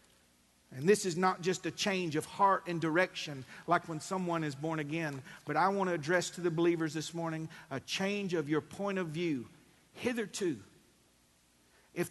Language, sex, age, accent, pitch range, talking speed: English, male, 50-69, American, 130-195 Hz, 180 wpm